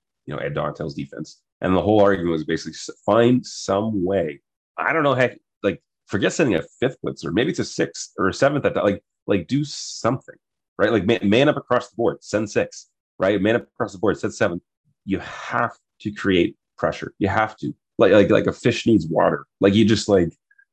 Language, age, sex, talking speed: English, 30-49, male, 215 wpm